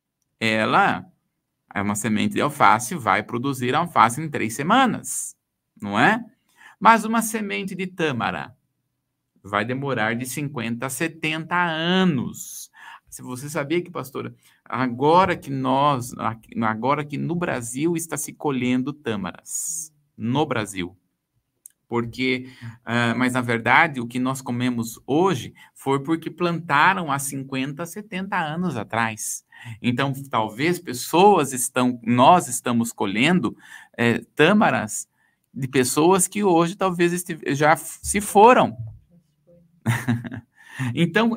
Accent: Brazilian